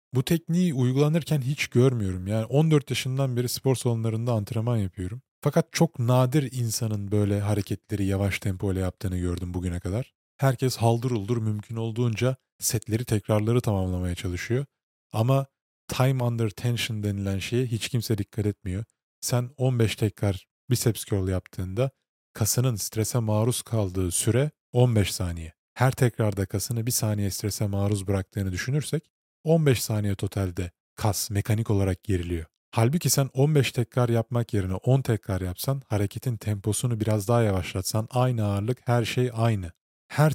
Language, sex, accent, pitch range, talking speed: Turkish, male, native, 100-130 Hz, 140 wpm